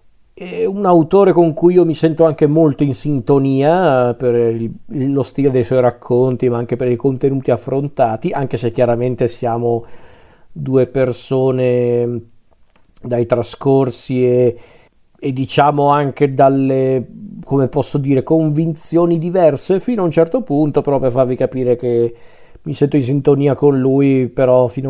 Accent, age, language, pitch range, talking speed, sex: native, 40-59, Italian, 125-150 Hz, 145 wpm, male